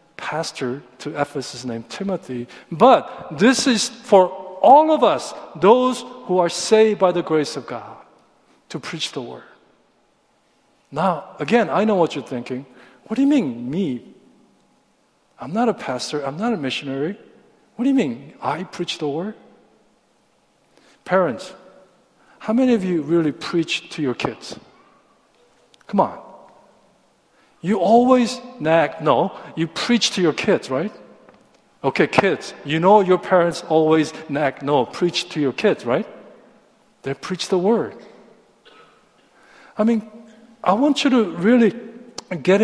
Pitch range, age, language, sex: 160-230 Hz, 50-69, Korean, male